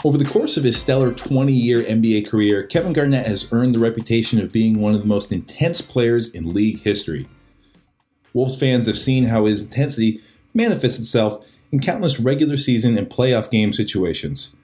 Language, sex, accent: English, male, American